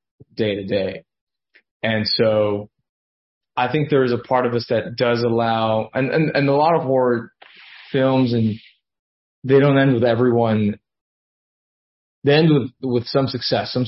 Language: English